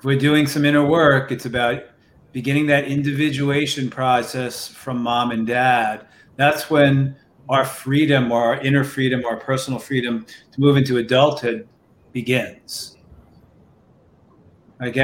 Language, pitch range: English, 130-145 Hz